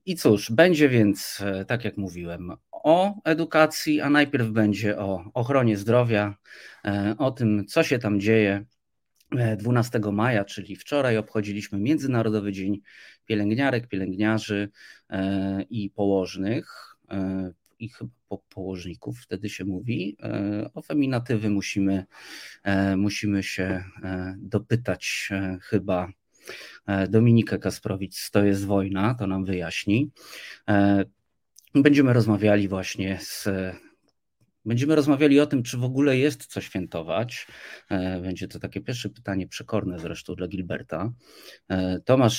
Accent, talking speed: native, 110 wpm